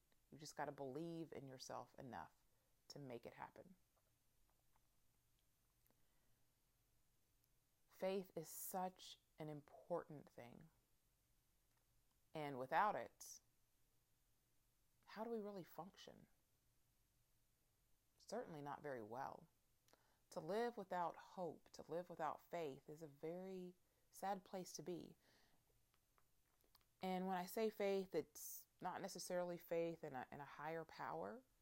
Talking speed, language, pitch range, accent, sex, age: 115 wpm, English, 120-185 Hz, American, female, 30-49